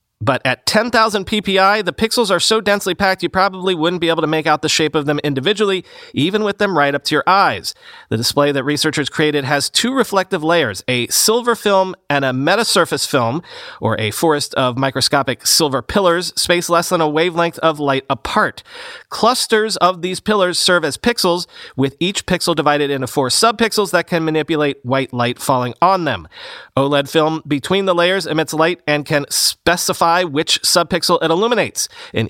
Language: English